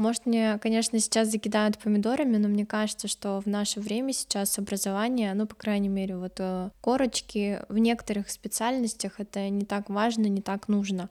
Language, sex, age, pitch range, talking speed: Russian, female, 20-39, 200-230 Hz, 165 wpm